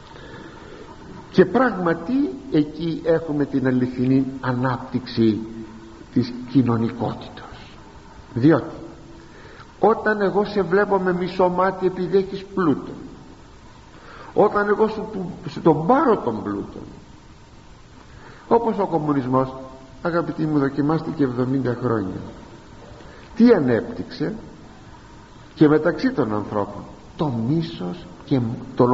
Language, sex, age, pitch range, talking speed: Greek, male, 50-69, 120-195 Hz, 90 wpm